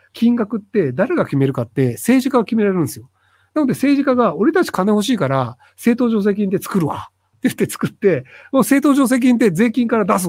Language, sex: Japanese, male